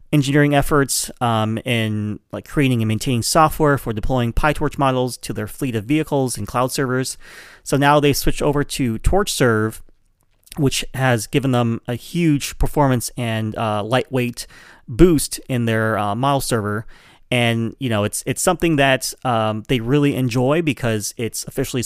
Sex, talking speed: male, 160 wpm